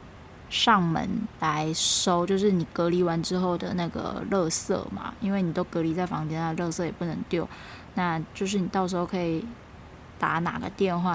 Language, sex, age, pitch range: Chinese, female, 20-39, 175-215 Hz